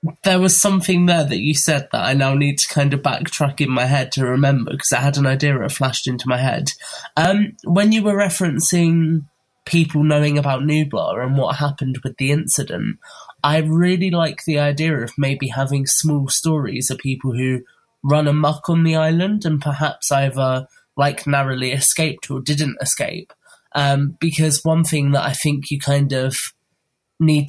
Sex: male